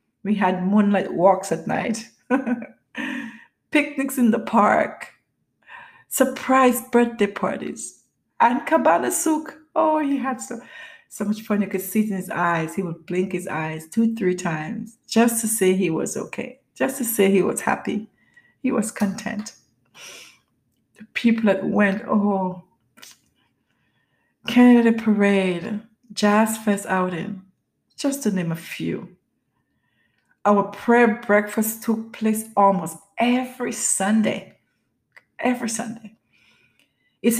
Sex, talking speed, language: female, 125 wpm, English